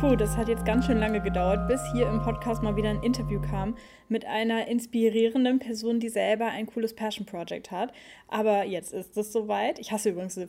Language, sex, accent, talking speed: German, female, German, 205 wpm